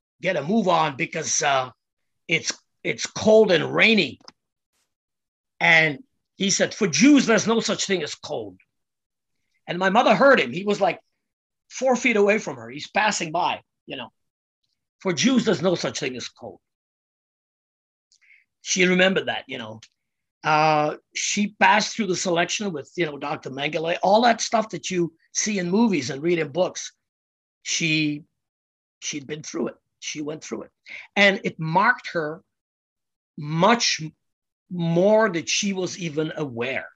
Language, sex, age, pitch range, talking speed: English, male, 50-69, 145-195 Hz, 155 wpm